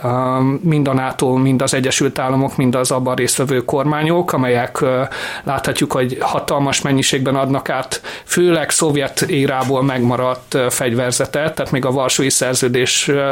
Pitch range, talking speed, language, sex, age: 130-150 Hz, 130 wpm, Hungarian, male, 30-49